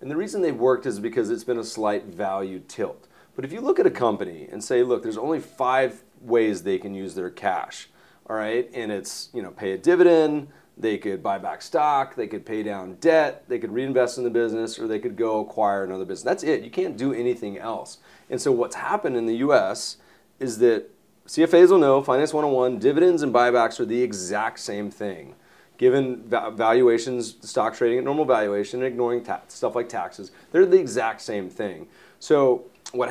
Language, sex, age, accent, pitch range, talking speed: English, male, 30-49, American, 105-135 Hz, 200 wpm